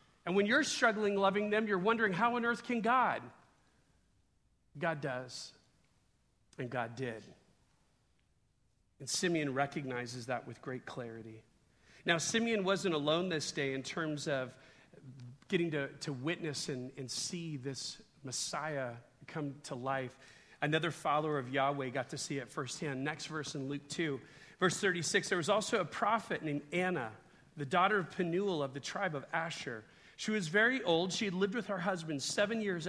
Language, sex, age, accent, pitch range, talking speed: English, male, 40-59, American, 140-200 Hz, 165 wpm